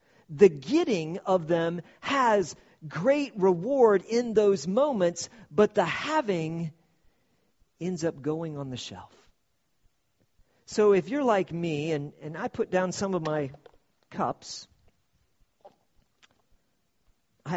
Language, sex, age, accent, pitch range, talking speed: English, male, 50-69, American, 130-200 Hz, 115 wpm